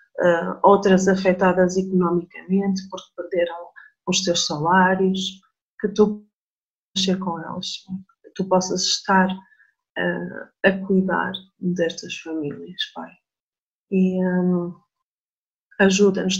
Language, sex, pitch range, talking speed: Portuguese, female, 180-195 Hz, 95 wpm